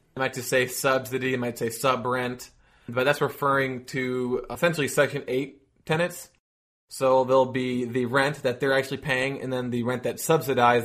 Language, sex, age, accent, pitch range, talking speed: English, male, 20-39, American, 120-135 Hz, 175 wpm